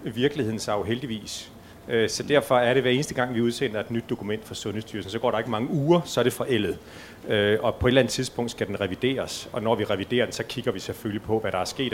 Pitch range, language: 105-135 Hz, Danish